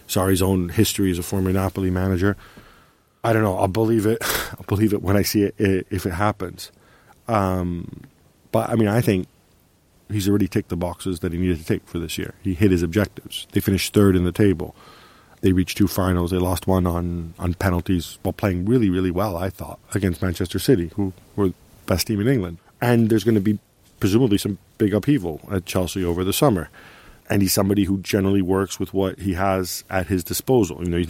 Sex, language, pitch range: male, English, 90-105 Hz